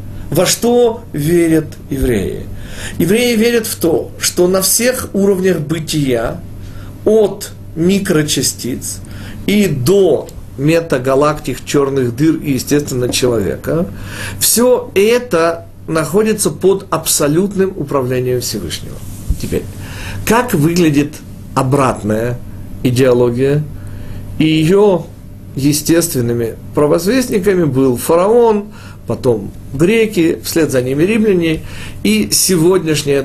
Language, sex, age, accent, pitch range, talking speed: Russian, male, 50-69, native, 105-175 Hz, 90 wpm